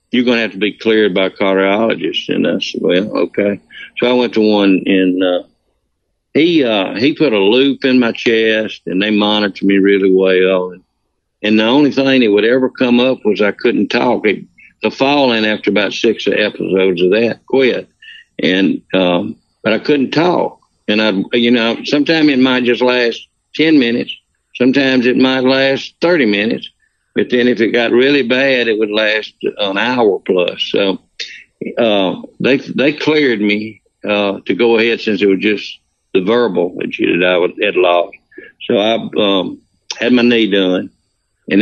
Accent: American